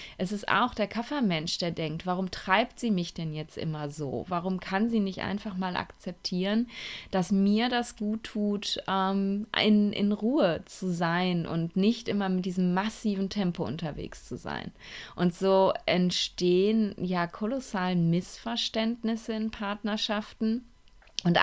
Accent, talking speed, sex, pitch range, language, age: German, 145 wpm, female, 175-215 Hz, German, 30-49